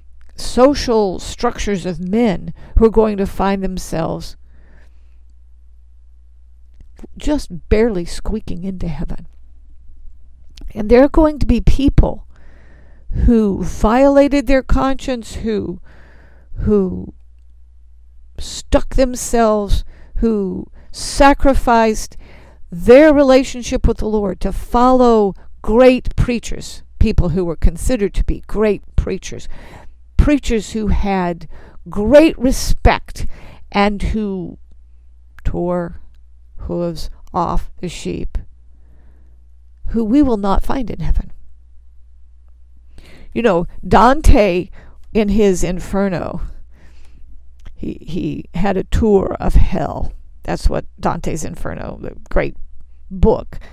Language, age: English, 50-69